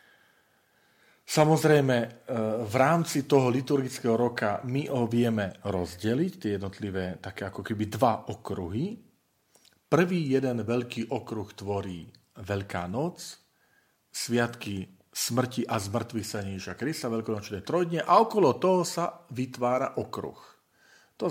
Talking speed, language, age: 115 wpm, Slovak, 40-59